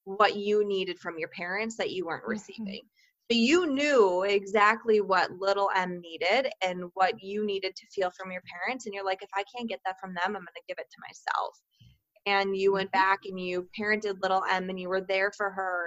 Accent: American